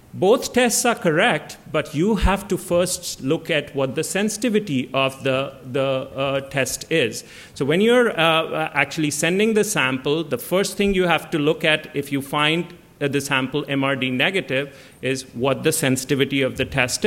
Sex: male